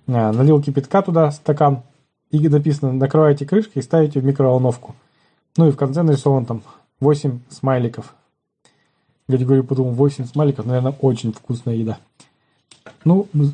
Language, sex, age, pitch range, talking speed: Russian, male, 20-39, 125-150 Hz, 135 wpm